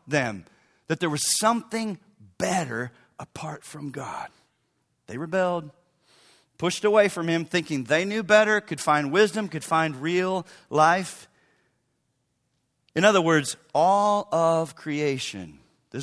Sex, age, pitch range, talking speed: male, 40-59, 135-185 Hz, 125 wpm